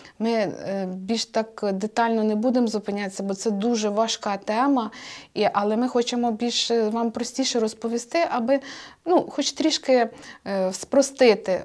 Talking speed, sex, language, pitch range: 125 wpm, female, Ukrainian, 200-250 Hz